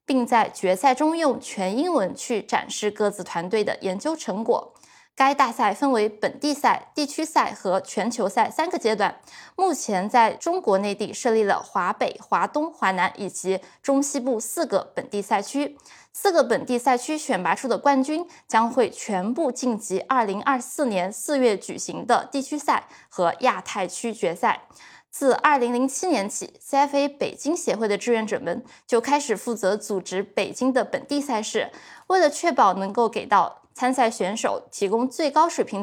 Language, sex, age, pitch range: Chinese, female, 20-39, 205-280 Hz